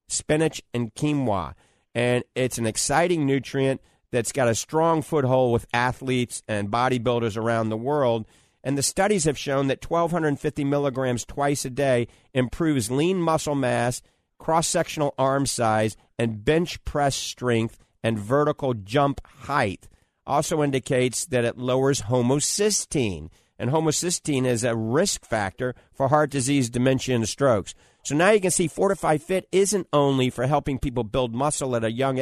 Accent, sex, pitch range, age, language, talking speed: American, male, 120-155 Hz, 50-69, English, 150 wpm